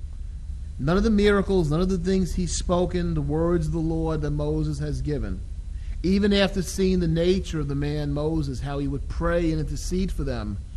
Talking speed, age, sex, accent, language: 205 wpm, 40-59, male, American, English